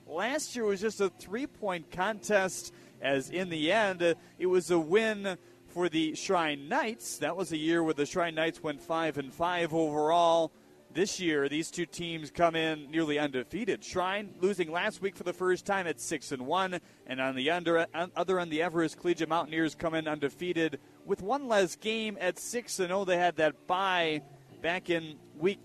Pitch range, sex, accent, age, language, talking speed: 150-190 Hz, male, American, 30-49, English, 195 wpm